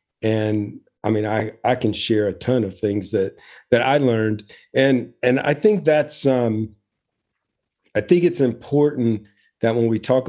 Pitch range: 105-125 Hz